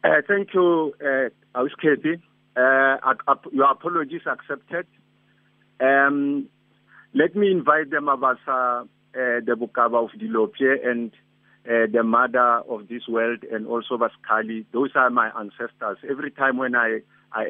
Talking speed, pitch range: 135 wpm, 120-150 Hz